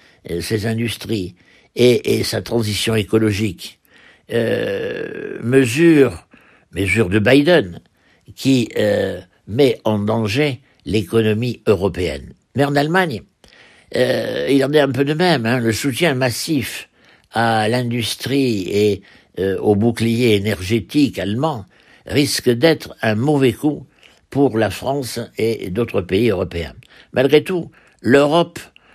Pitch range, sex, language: 110-145 Hz, male, French